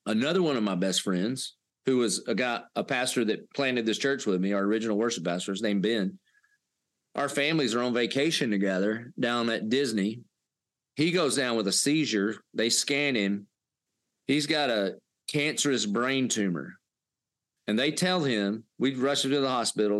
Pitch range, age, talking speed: 105-135 Hz, 40-59, 175 wpm